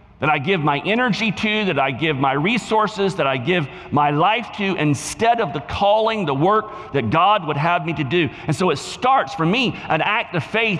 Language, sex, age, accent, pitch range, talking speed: English, male, 50-69, American, 155-220 Hz, 220 wpm